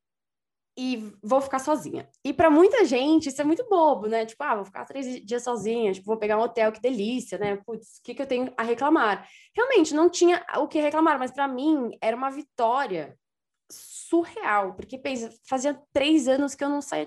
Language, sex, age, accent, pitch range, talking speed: Portuguese, female, 20-39, Brazilian, 215-275 Hz, 200 wpm